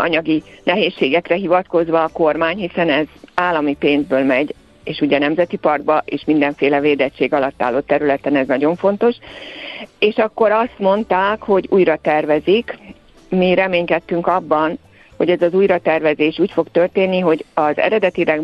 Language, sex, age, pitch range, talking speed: Hungarian, female, 50-69, 150-180 Hz, 145 wpm